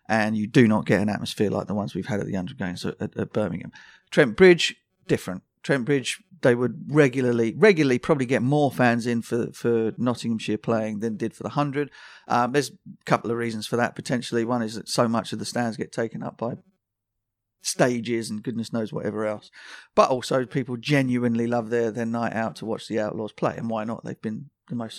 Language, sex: English, male